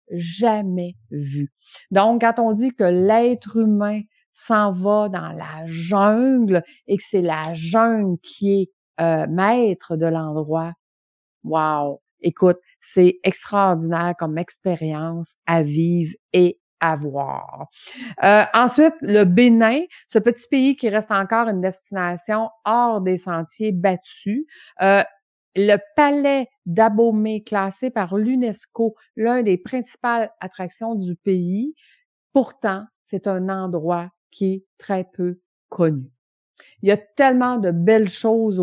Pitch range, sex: 175-225 Hz, female